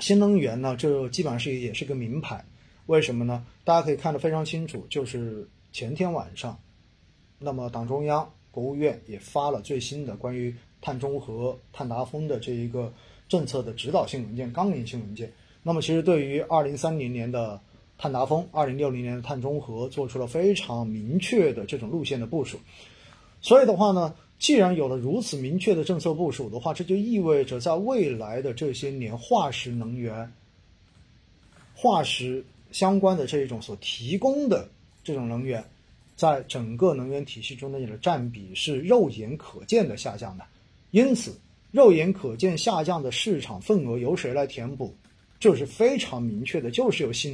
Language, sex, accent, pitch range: Chinese, male, native, 120-165 Hz